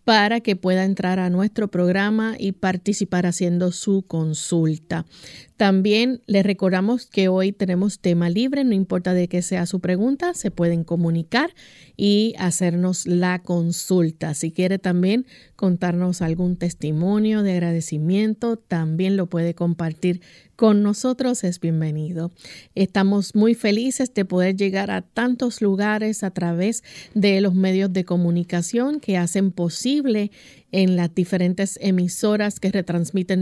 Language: Spanish